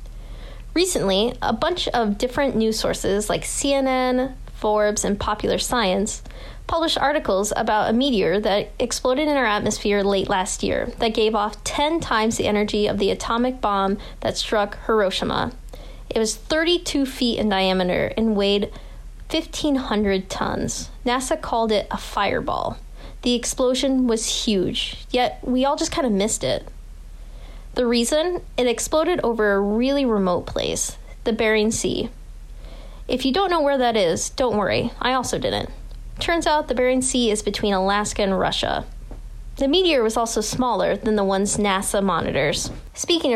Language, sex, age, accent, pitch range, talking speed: English, female, 10-29, American, 205-265 Hz, 155 wpm